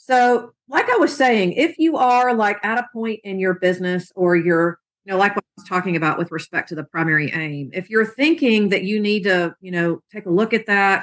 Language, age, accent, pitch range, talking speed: English, 40-59, American, 165-200 Hz, 245 wpm